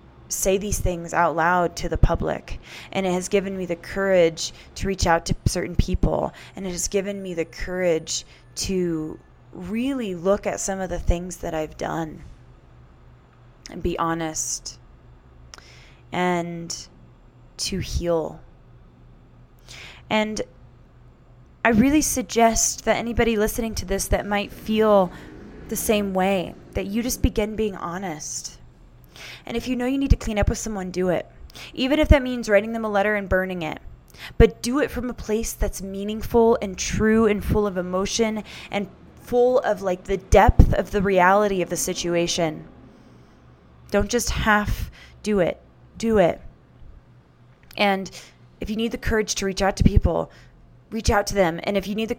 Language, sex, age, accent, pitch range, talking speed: English, female, 20-39, American, 160-215 Hz, 165 wpm